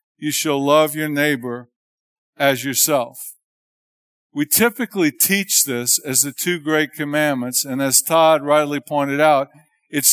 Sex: male